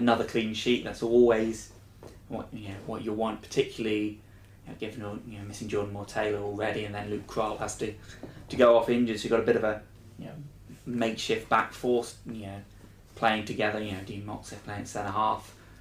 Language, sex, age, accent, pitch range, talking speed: English, male, 20-39, British, 105-115 Hz, 210 wpm